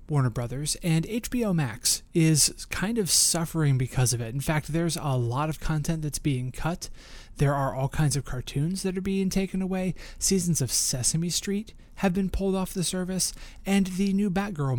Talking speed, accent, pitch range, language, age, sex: 190 wpm, American, 130-165 Hz, English, 30-49, male